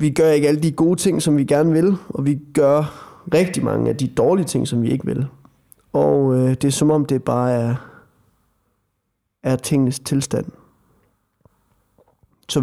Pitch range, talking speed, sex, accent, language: 120-145 Hz, 175 wpm, male, native, Danish